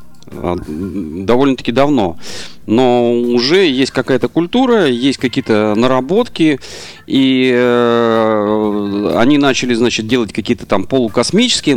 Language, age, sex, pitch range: Russian, 40-59, male, 105-140 Hz